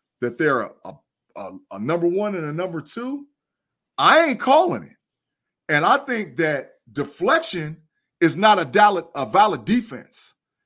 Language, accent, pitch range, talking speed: English, American, 165-245 Hz, 135 wpm